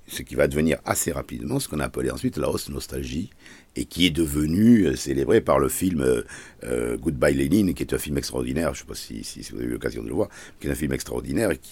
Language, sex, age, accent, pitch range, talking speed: French, male, 50-69, French, 70-115 Hz, 255 wpm